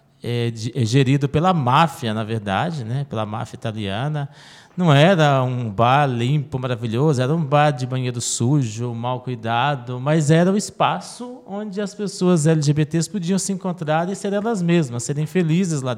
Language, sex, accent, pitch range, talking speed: Portuguese, male, Brazilian, 130-185 Hz, 170 wpm